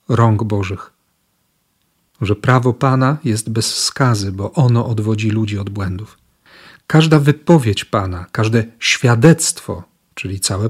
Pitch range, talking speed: 110-135 Hz, 120 wpm